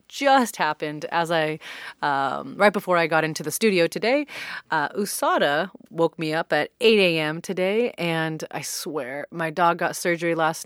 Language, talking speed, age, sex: English, 165 wpm, 30-49, female